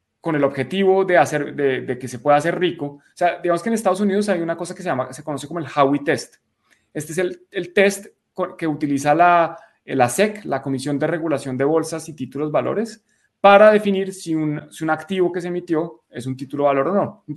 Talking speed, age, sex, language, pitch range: 230 wpm, 20-39, male, Spanish, 140-175 Hz